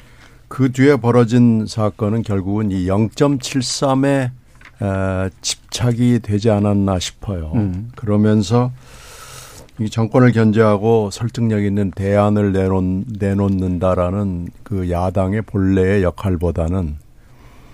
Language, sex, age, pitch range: Korean, male, 60-79, 95-120 Hz